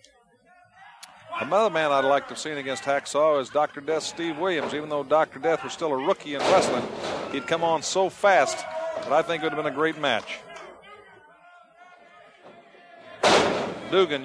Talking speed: 170 wpm